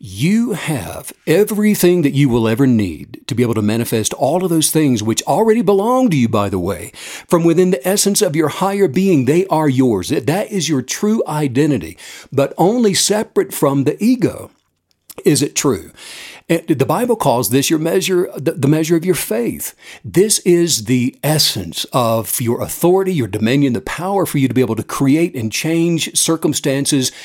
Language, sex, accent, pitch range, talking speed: English, male, American, 115-175 Hz, 180 wpm